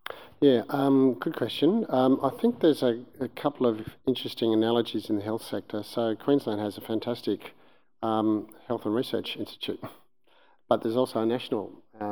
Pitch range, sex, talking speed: 110-125 Hz, male, 165 wpm